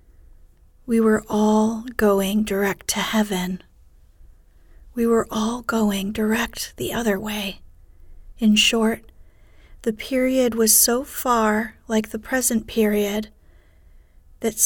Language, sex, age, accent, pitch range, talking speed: English, female, 30-49, American, 185-225 Hz, 110 wpm